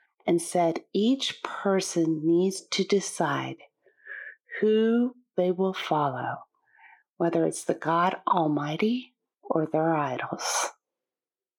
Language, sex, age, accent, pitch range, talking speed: English, female, 40-59, American, 165-210 Hz, 100 wpm